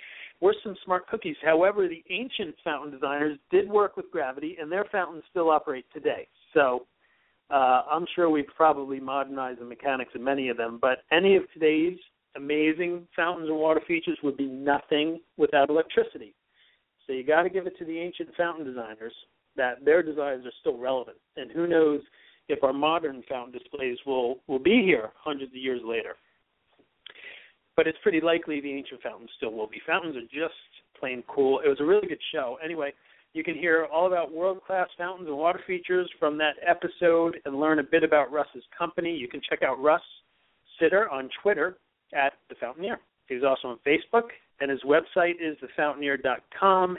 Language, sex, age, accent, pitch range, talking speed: English, male, 50-69, American, 140-175 Hz, 180 wpm